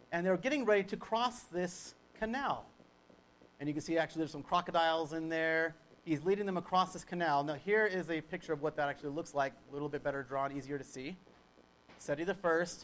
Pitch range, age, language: 140-175 Hz, 40-59, English